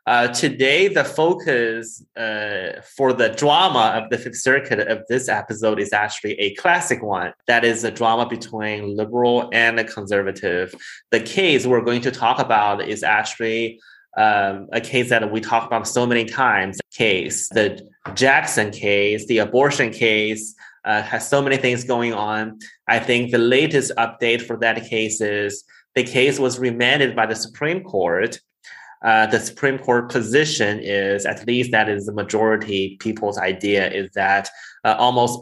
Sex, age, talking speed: male, 20-39, 165 wpm